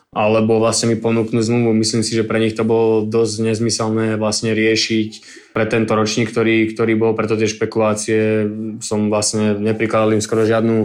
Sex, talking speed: male, 170 wpm